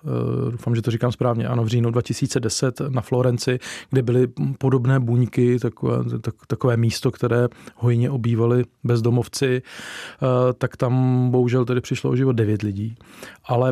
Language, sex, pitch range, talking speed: Czech, male, 115-130 Hz, 155 wpm